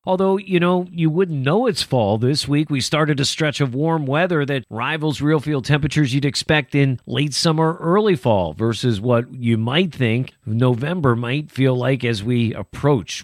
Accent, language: American, English